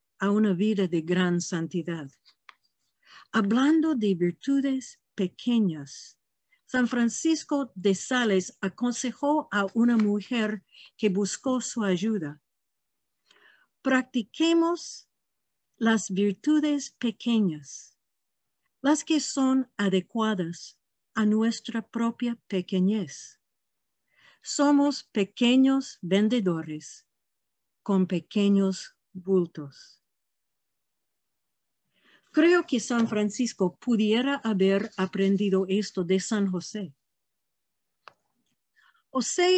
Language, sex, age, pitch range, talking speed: Portuguese, female, 50-69, 190-255 Hz, 80 wpm